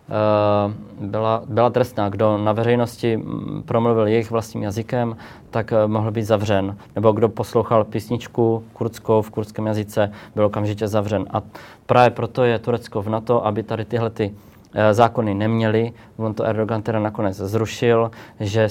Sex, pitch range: male, 105-115 Hz